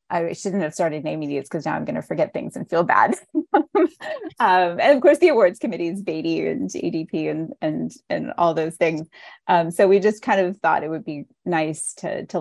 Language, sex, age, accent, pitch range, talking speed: English, female, 30-49, American, 155-190 Hz, 220 wpm